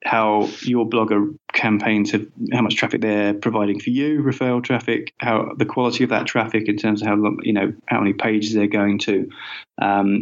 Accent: British